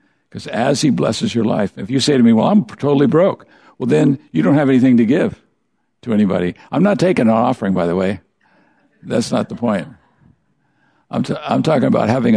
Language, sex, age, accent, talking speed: English, male, 60-79, American, 205 wpm